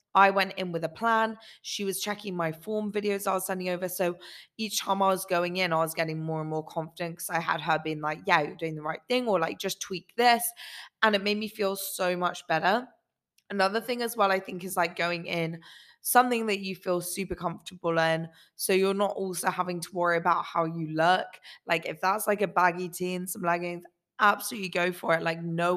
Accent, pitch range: British, 165-200 Hz